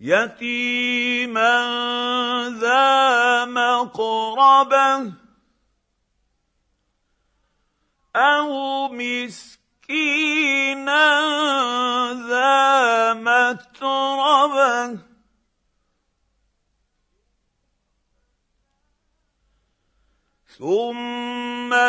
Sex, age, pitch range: male, 50-69, 245-290 Hz